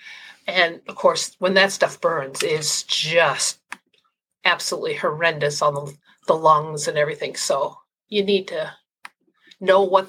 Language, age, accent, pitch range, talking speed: English, 50-69, American, 190-255 Hz, 135 wpm